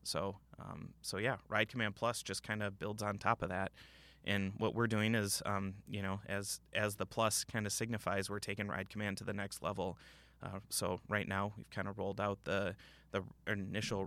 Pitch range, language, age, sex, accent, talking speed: 100-110 Hz, English, 20-39, male, American, 215 wpm